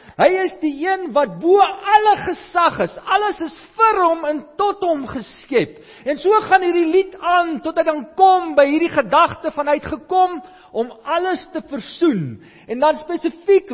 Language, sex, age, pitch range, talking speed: English, male, 50-69, 255-350 Hz, 165 wpm